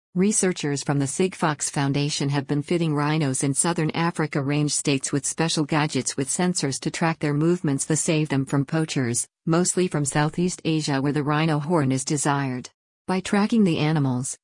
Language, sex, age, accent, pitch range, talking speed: English, female, 50-69, American, 145-165 Hz, 170 wpm